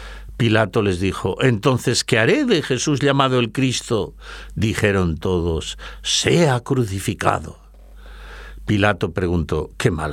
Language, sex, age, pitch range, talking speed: Spanish, male, 60-79, 85-115 Hz, 115 wpm